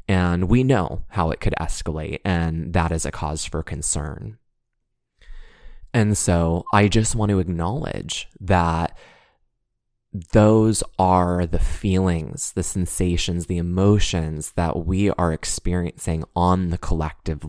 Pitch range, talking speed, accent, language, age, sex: 80-100 Hz, 125 wpm, American, English, 20-39, male